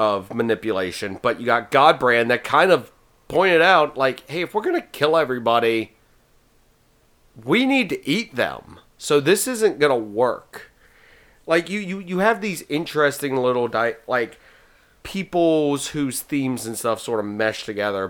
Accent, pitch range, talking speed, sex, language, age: American, 110-160 Hz, 155 wpm, male, English, 30-49